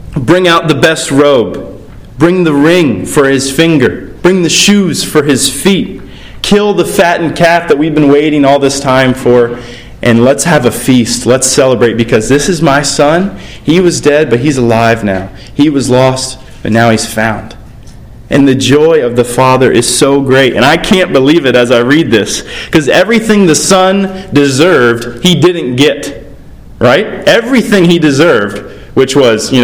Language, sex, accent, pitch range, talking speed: English, male, American, 125-180 Hz, 180 wpm